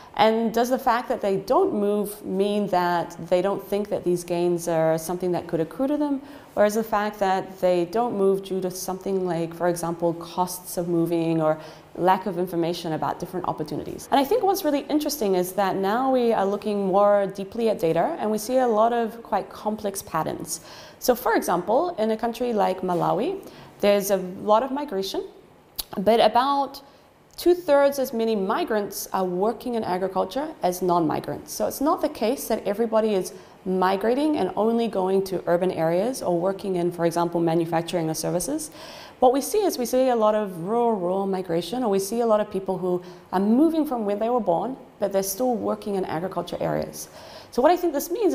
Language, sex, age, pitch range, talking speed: English, female, 30-49, 180-235 Hz, 200 wpm